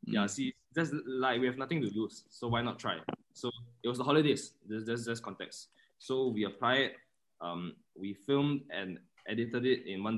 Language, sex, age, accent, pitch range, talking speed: English, male, 20-39, Malaysian, 100-120 Hz, 195 wpm